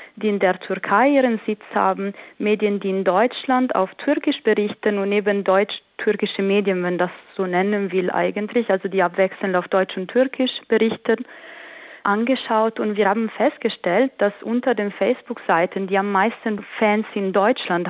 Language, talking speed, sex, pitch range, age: German, 160 wpm, female, 185-215 Hz, 30-49